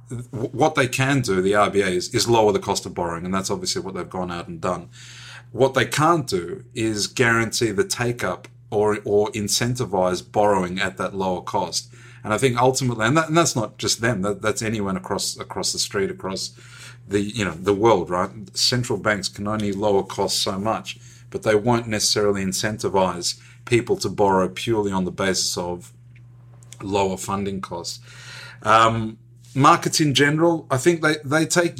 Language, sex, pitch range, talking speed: English, male, 100-125 Hz, 185 wpm